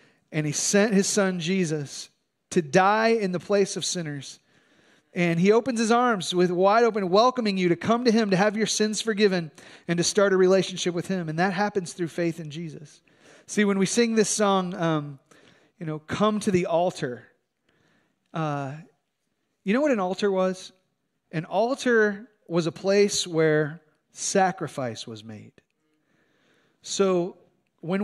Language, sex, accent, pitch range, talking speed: English, male, American, 155-205 Hz, 165 wpm